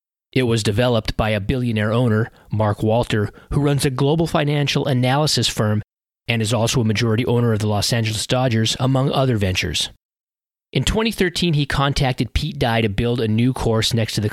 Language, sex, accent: English, male, American